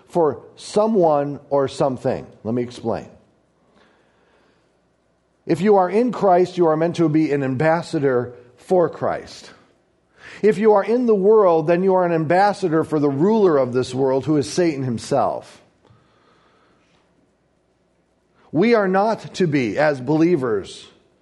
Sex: male